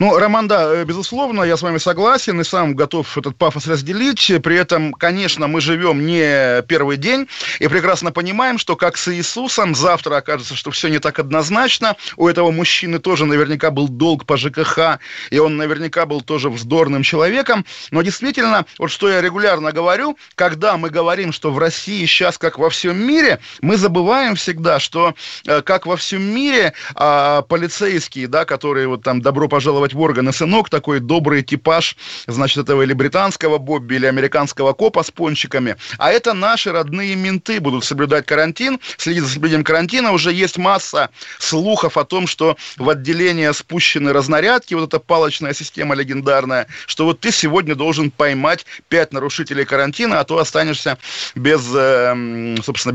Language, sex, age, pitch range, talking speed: Russian, male, 20-39, 145-180 Hz, 160 wpm